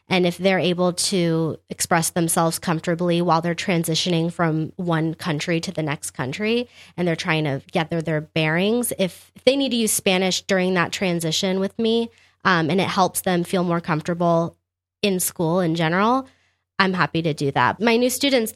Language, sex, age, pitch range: English, female, 20-39, 165-195 Hz